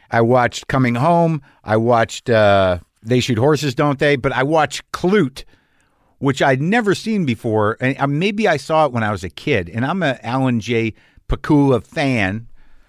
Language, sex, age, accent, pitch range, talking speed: English, male, 50-69, American, 110-145 Hz, 175 wpm